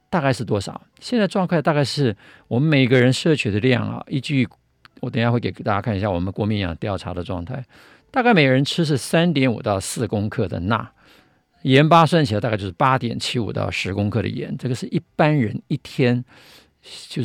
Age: 50-69